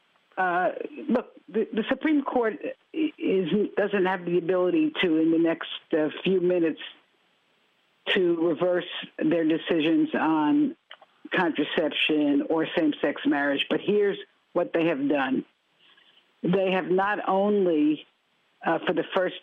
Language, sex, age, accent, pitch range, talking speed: English, female, 60-79, American, 165-275 Hz, 125 wpm